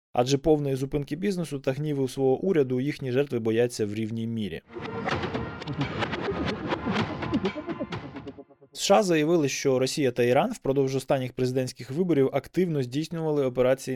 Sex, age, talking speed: male, 20-39, 120 wpm